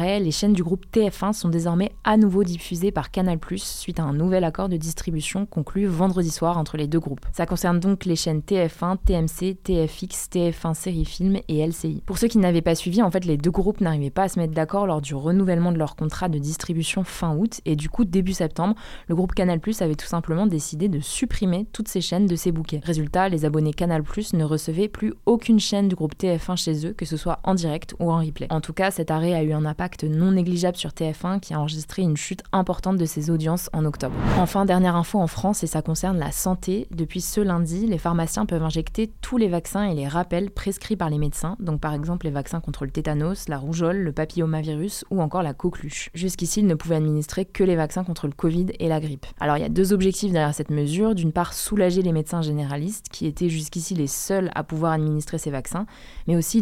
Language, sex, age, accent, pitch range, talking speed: French, female, 20-39, French, 160-190 Hz, 230 wpm